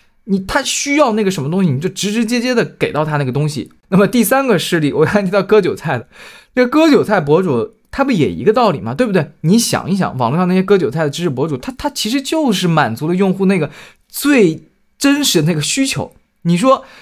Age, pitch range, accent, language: 20-39, 160-220 Hz, native, Chinese